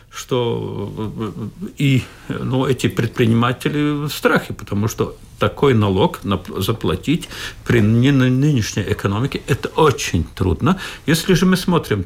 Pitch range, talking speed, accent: 115-155 Hz, 115 wpm, native